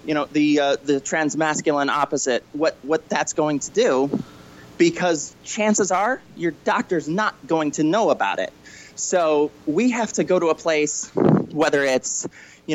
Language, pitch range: English, 140-175 Hz